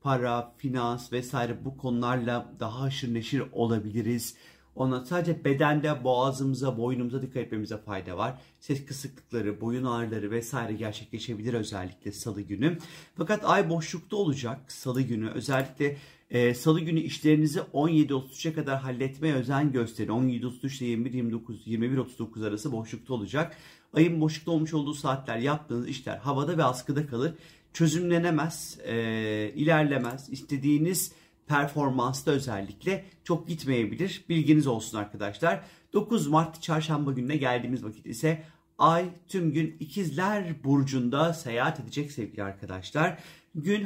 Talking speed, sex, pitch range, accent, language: 120 wpm, male, 120-155 Hz, native, Turkish